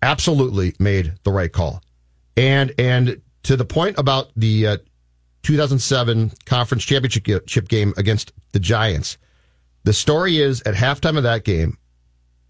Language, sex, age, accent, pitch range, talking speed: English, male, 40-59, American, 95-130 Hz, 135 wpm